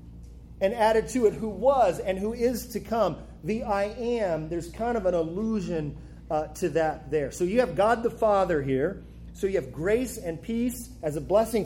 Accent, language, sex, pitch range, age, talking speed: American, English, male, 160-215 Hz, 40-59, 200 wpm